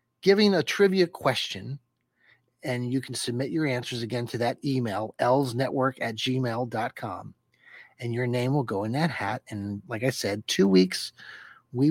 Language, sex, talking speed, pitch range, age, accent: English, male, 160 wpm, 110-130 Hz, 30-49, American